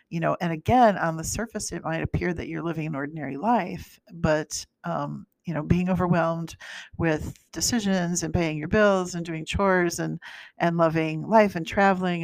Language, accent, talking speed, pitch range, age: English, American, 180 wpm, 150-185 Hz, 50-69